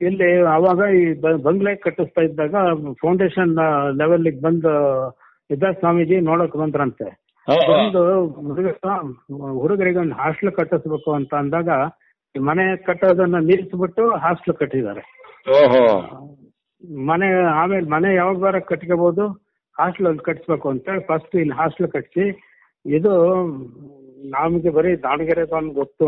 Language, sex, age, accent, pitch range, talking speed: Kannada, male, 60-79, native, 150-185 Hz, 105 wpm